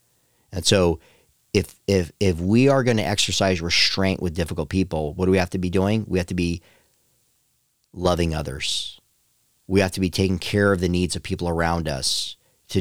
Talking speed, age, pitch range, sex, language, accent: 190 wpm, 40-59, 85-105 Hz, male, English, American